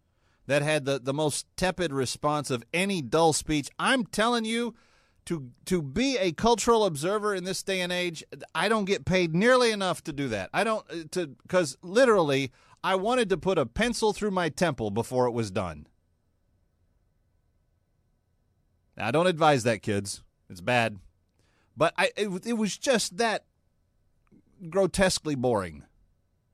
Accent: American